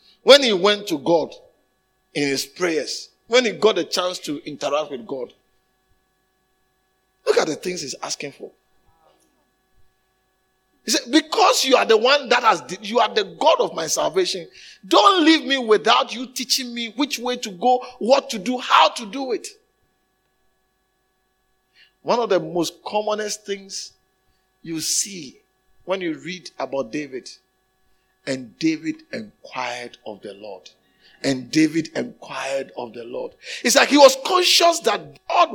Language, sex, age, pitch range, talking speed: English, male, 50-69, 190-315 Hz, 150 wpm